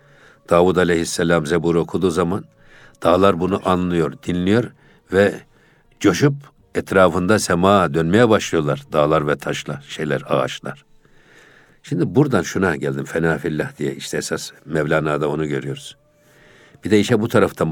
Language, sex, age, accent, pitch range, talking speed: Turkish, male, 60-79, native, 85-115 Hz, 120 wpm